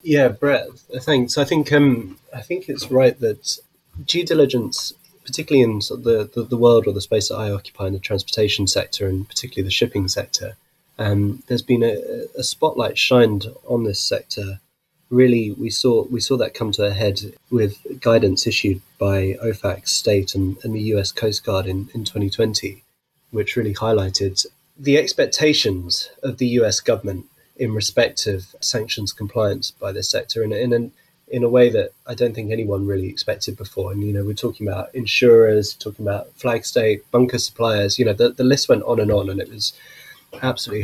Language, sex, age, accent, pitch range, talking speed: English, male, 20-39, British, 100-130 Hz, 185 wpm